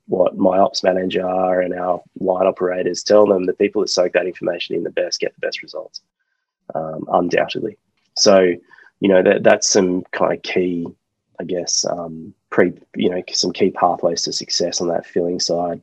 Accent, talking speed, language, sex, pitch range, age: Australian, 185 wpm, English, male, 90-100 Hz, 20-39